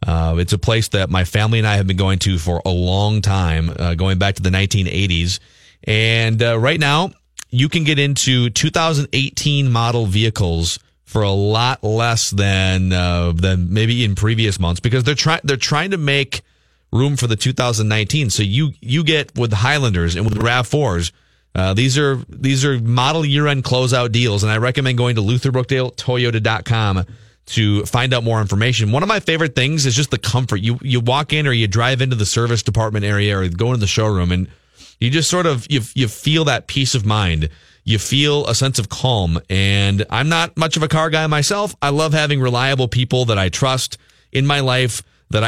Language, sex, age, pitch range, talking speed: English, male, 30-49, 100-135 Hz, 200 wpm